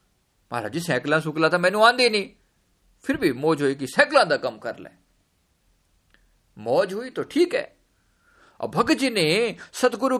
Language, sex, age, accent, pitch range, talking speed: Hindi, male, 50-69, native, 145-235 Hz, 155 wpm